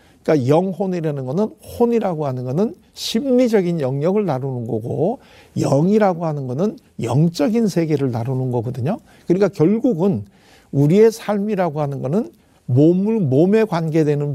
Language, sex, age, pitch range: Korean, male, 60-79, 140-205 Hz